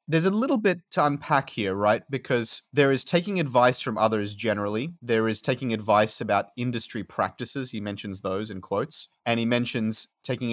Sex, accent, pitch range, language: male, Australian, 105-125 Hz, English